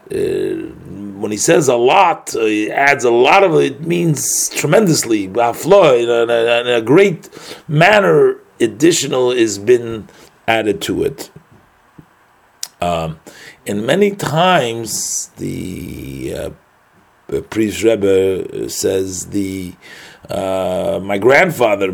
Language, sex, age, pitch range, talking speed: English, male, 40-59, 105-140 Hz, 115 wpm